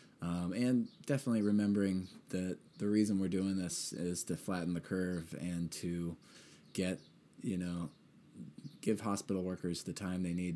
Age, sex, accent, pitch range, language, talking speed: 20-39, male, American, 85-115 Hz, English, 155 wpm